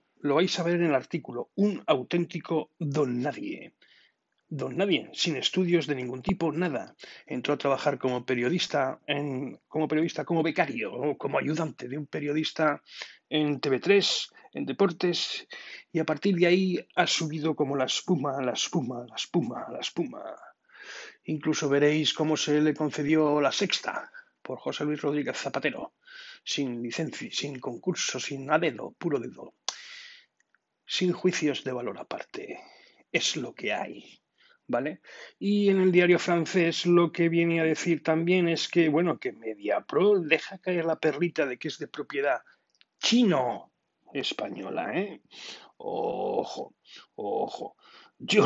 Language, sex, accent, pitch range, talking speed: Spanish, male, Spanish, 145-180 Hz, 145 wpm